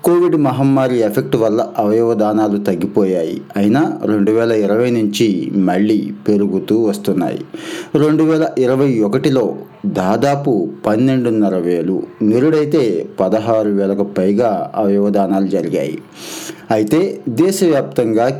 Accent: native